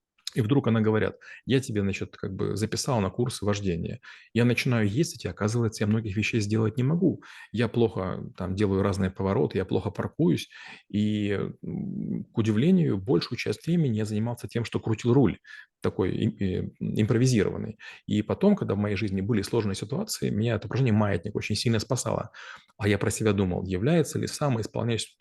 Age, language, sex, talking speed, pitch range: 30-49, Russian, male, 170 wpm, 100-120 Hz